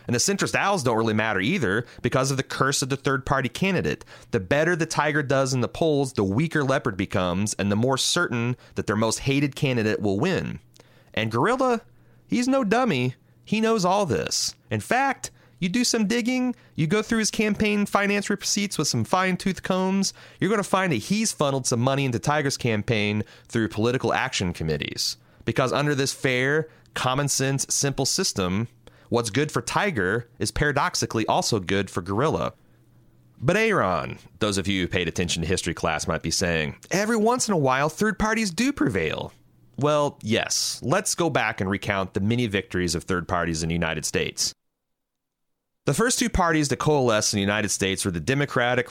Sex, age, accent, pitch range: male, 30-49, American, 100-145 Hz